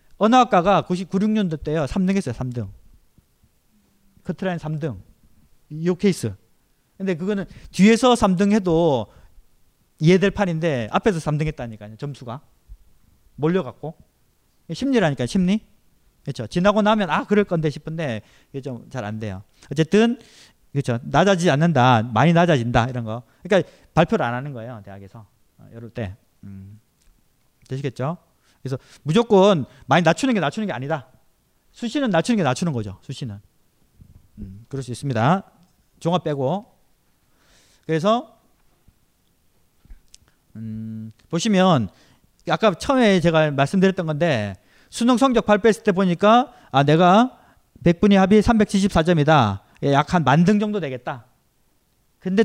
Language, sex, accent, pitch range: Korean, male, native, 120-195 Hz